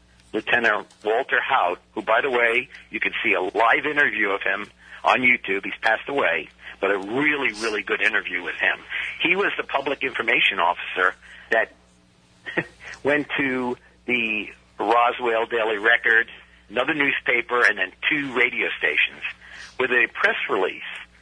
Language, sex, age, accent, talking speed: English, male, 60-79, American, 145 wpm